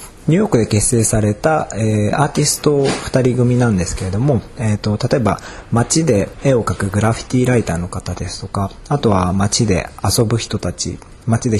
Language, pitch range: Japanese, 95-125 Hz